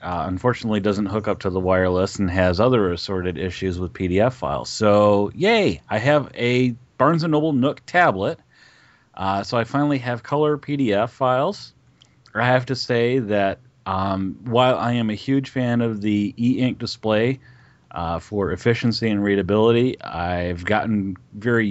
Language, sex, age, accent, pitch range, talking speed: English, male, 30-49, American, 100-125 Hz, 160 wpm